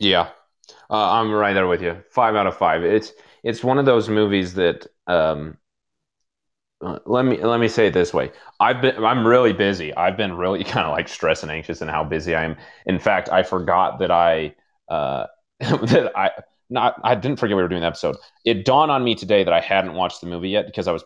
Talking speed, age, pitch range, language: 235 wpm, 30-49, 85-110 Hz, English